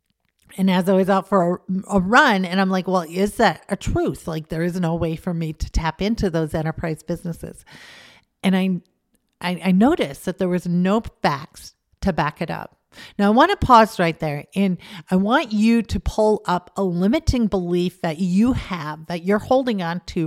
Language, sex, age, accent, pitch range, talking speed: English, female, 40-59, American, 170-205 Hz, 205 wpm